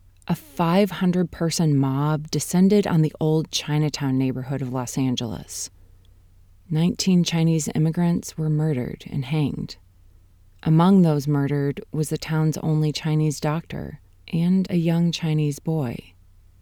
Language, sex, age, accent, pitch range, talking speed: English, female, 30-49, American, 140-170 Hz, 120 wpm